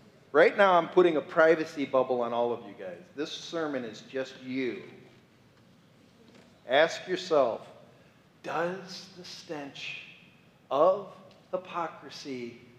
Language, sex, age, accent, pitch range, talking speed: English, male, 40-59, American, 145-200 Hz, 115 wpm